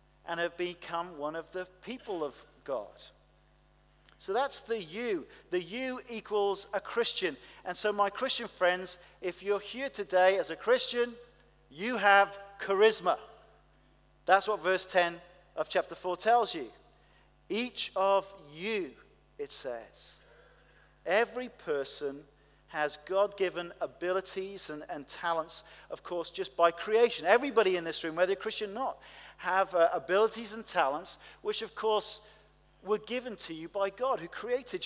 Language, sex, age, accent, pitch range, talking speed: English, male, 40-59, British, 180-220 Hz, 145 wpm